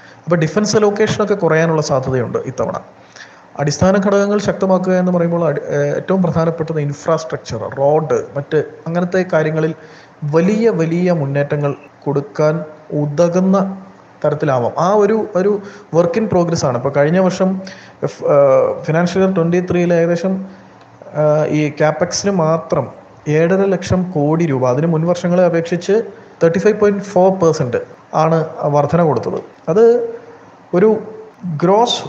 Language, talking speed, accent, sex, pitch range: Malayalam, 110 wpm, native, male, 155-200 Hz